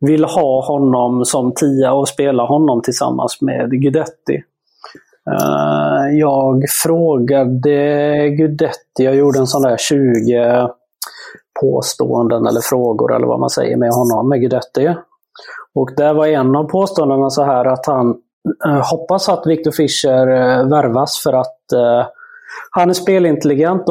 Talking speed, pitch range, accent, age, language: 130 wpm, 130-165 Hz, Swedish, 30-49, English